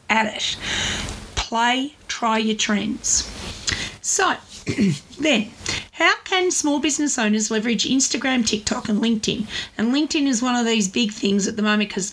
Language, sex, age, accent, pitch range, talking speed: English, female, 40-59, Australian, 215-275 Hz, 150 wpm